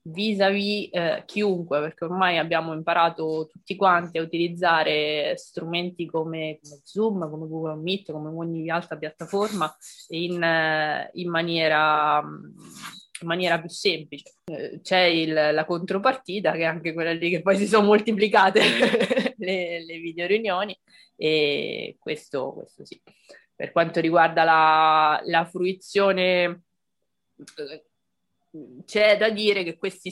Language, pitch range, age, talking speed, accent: Italian, 160-195 Hz, 20-39, 125 wpm, native